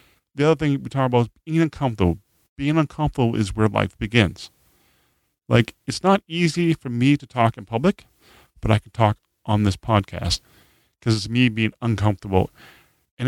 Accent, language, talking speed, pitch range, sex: American, English, 170 wpm, 105-135 Hz, male